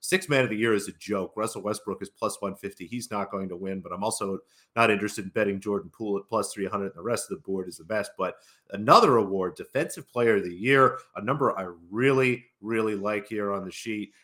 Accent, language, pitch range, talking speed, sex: American, English, 100-115 Hz, 235 wpm, male